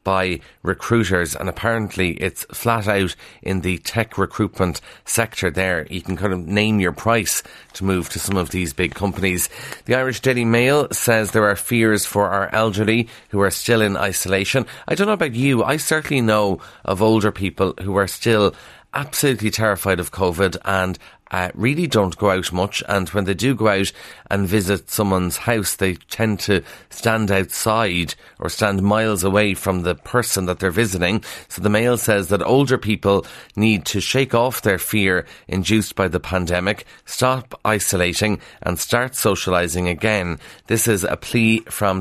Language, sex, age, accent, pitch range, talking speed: English, male, 30-49, Irish, 95-110 Hz, 175 wpm